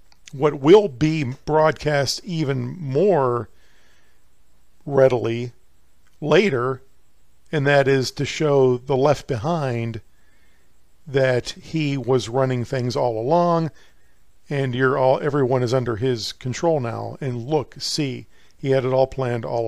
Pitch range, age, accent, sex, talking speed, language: 115-140 Hz, 50-69, American, male, 125 wpm, English